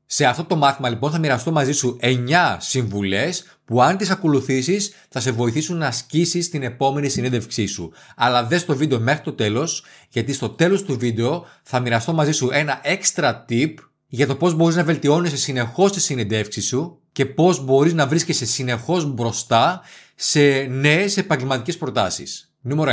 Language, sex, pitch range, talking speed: Greek, male, 115-150 Hz, 170 wpm